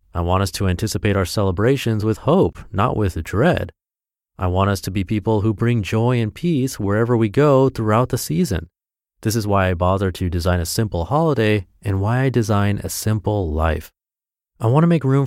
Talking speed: 195 wpm